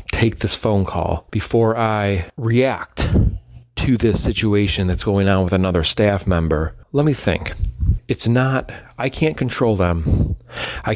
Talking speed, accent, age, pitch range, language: 150 wpm, American, 30-49, 90-120 Hz, English